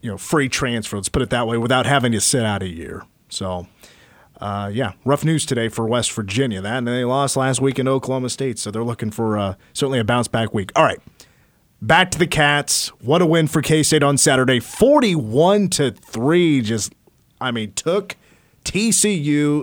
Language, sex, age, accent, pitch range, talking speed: English, male, 30-49, American, 115-150 Hz, 200 wpm